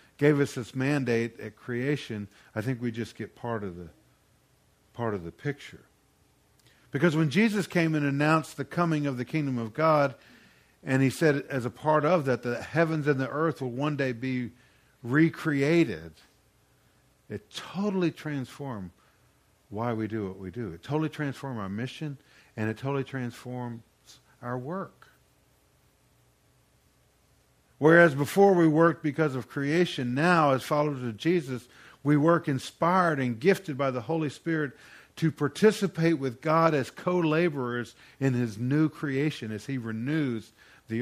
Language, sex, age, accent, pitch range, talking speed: English, male, 50-69, American, 120-160 Hz, 150 wpm